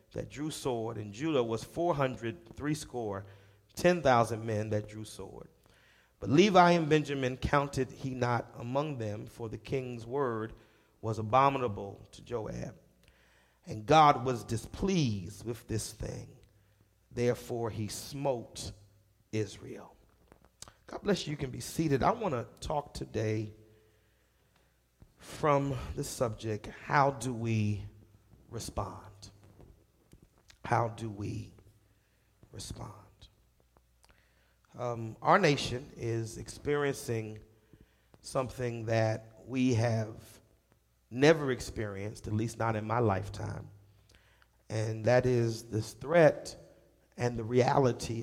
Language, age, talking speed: English, 30-49, 115 wpm